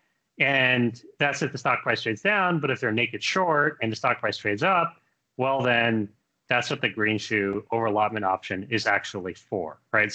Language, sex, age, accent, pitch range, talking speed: English, male, 30-49, American, 110-145 Hz, 195 wpm